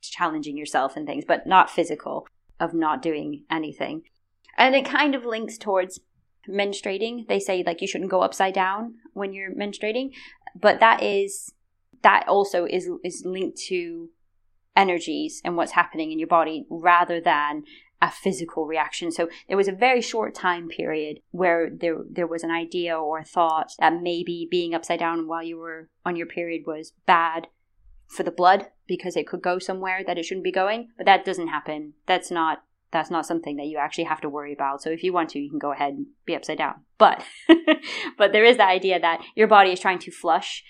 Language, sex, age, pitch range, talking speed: English, female, 20-39, 160-195 Hz, 200 wpm